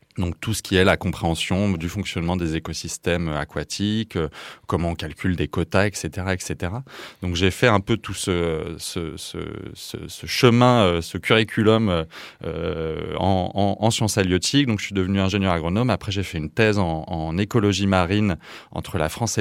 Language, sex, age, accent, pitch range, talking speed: French, male, 20-39, French, 85-105 Hz, 175 wpm